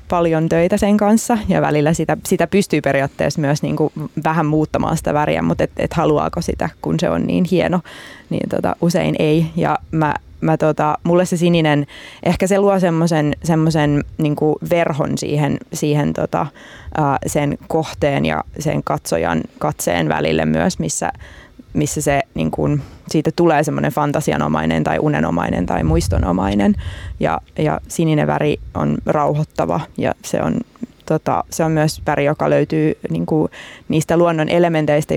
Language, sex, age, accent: Finnish, female, 20-39, native